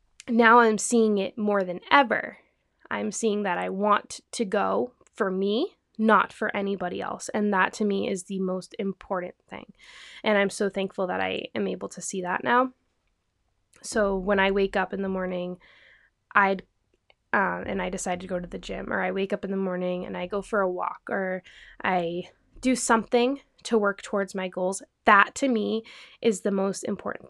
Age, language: 10-29, English